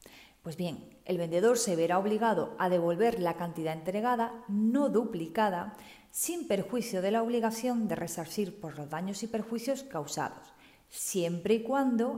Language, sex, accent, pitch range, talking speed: Spanish, female, Spanish, 175-245 Hz, 150 wpm